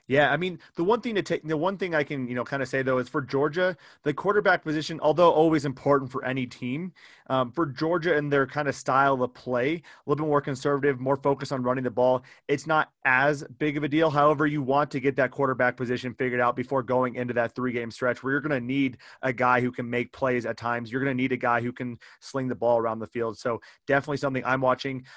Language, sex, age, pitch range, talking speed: English, male, 30-49, 125-145 Hz, 255 wpm